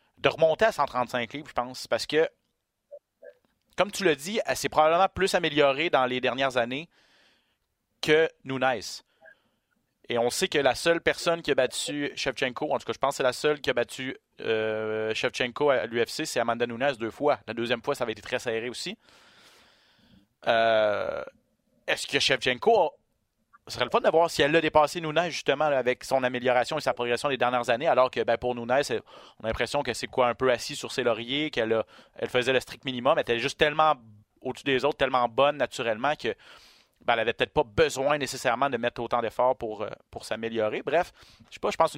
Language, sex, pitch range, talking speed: French, male, 115-150 Hz, 210 wpm